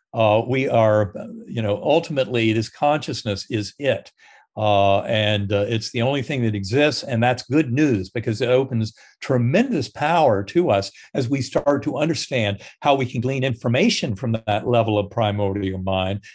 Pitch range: 110-145 Hz